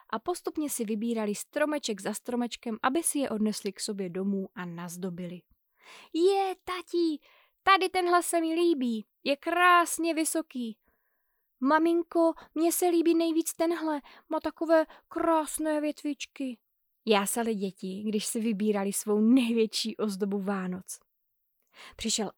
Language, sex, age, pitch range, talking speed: Czech, female, 20-39, 210-295 Hz, 125 wpm